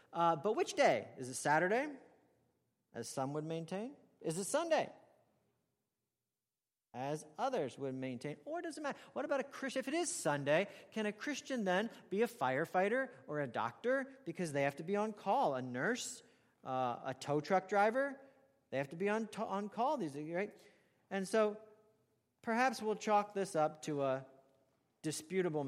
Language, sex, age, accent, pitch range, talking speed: English, male, 40-59, American, 150-225 Hz, 175 wpm